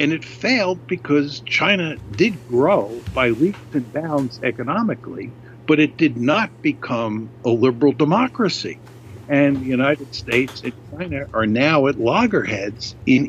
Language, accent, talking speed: English, American, 140 wpm